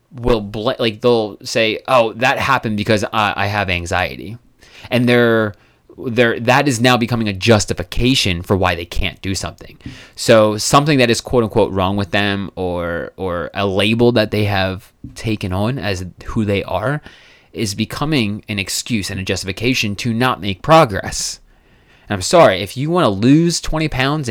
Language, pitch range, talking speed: English, 95-120 Hz, 170 wpm